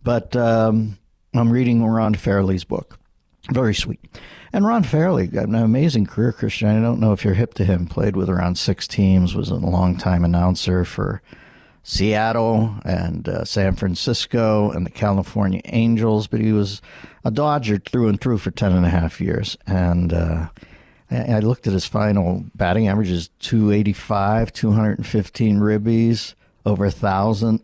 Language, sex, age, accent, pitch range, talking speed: English, male, 60-79, American, 95-115 Hz, 160 wpm